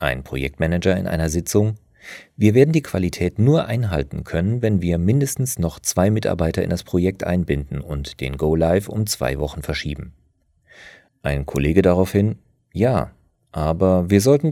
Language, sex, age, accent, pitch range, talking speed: German, male, 40-59, German, 75-105 Hz, 150 wpm